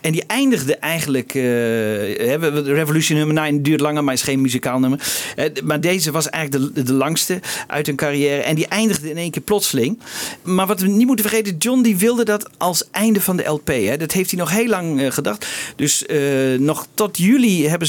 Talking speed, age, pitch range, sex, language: 205 wpm, 40-59, 140-195 Hz, male, Dutch